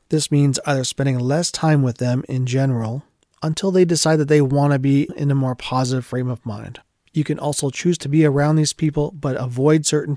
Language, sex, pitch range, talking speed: English, male, 125-150 Hz, 220 wpm